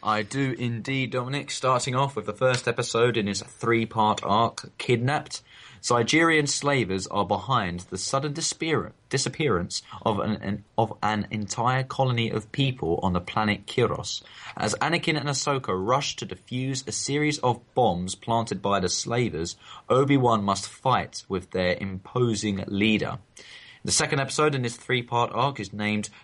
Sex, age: male, 20-39